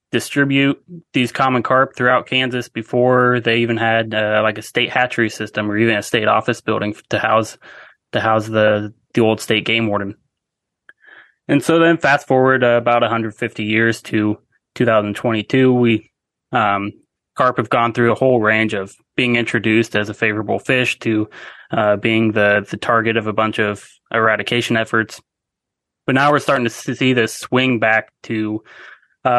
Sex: male